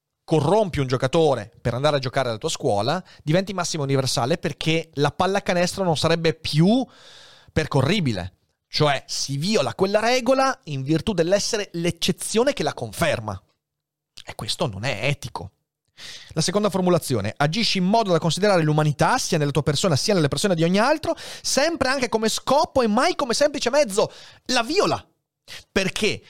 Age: 30-49